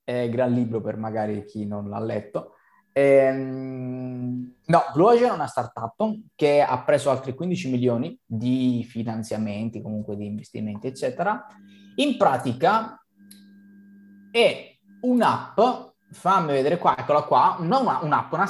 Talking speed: 135 wpm